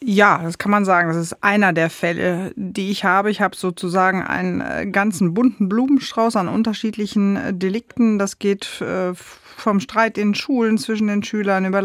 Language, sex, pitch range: German, female, 175-205 Hz